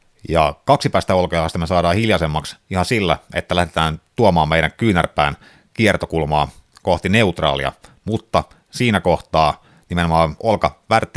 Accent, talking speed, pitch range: native, 120 wpm, 75-90 Hz